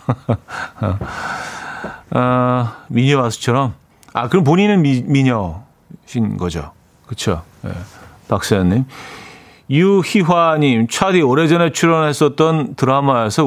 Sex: male